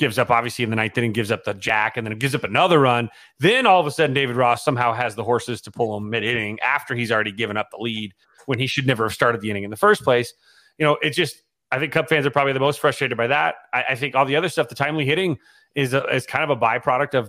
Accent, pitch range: American, 120-150 Hz